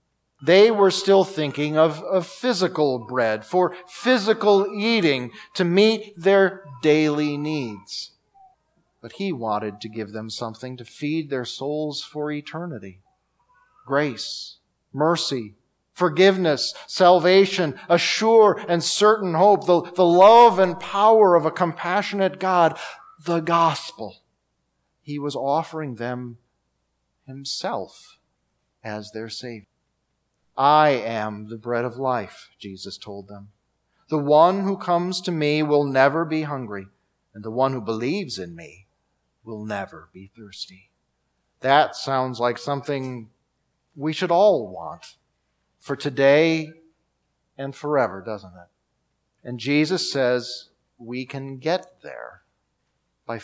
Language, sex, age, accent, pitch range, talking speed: English, male, 40-59, American, 110-175 Hz, 120 wpm